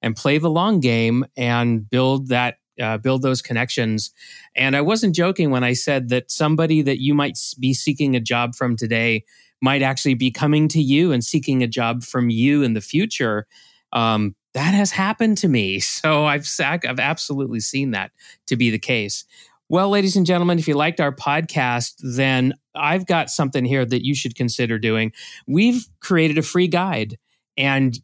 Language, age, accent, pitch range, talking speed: English, 30-49, American, 125-165 Hz, 185 wpm